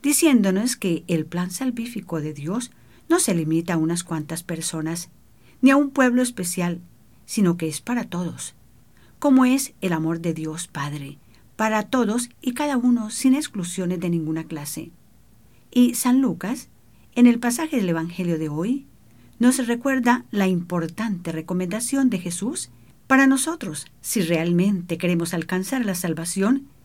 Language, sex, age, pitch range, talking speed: English, female, 50-69, 165-245 Hz, 145 wpm